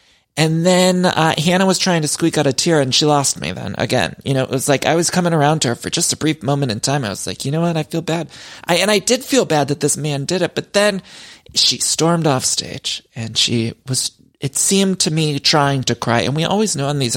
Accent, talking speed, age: American, 270 wpm, 30-49